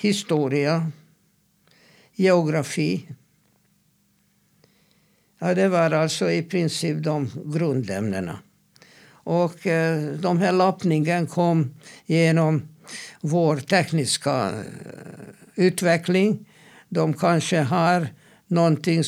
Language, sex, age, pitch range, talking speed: Swedish, male, 60-79, 135-175 Hz, 70 wpm